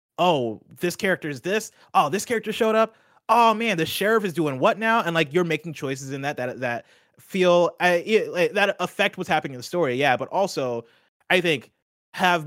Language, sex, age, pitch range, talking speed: English, male, 30-49, 120-170 Hz, 210 wpm